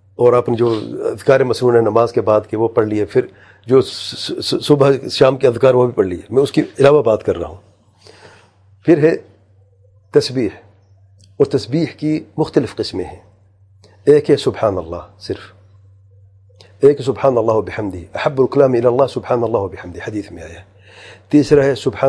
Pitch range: 100-135 Hz